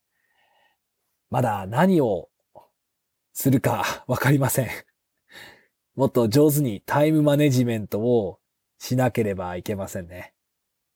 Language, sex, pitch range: Japanese, male, 120-165 Hz